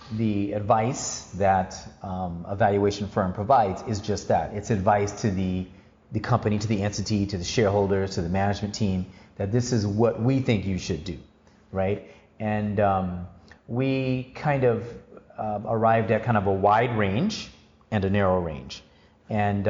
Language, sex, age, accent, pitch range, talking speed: English, male, 30-49, American, 95-115 Hz, 170 wpm